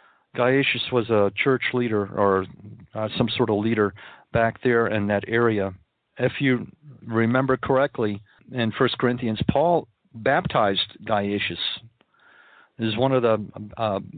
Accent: American